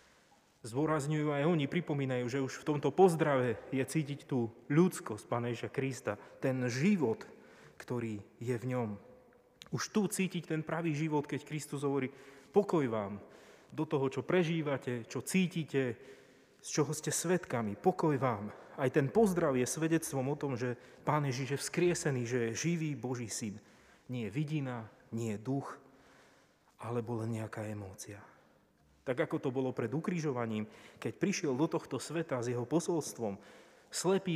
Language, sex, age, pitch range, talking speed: Slovak, male, 30-49, 125-160 Hz, 145 wpm